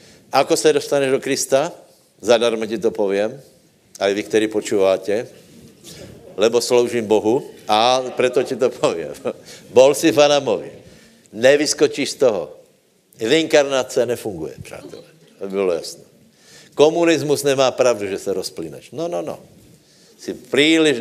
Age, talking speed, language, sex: 60-79, 125 wpm, Slovak, male